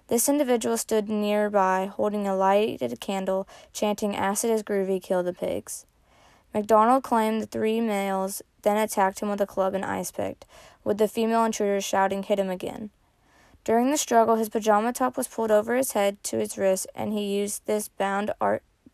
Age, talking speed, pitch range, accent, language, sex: 20-39, 180 wpm, 195-225 Hz, American, English, female